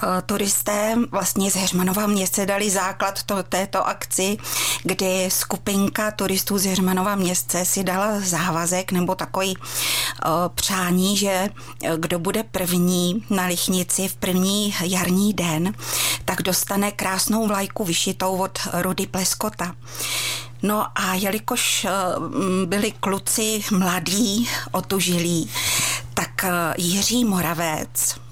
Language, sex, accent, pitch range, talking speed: Czech, female, native, 185-205 Hz, 105 wpm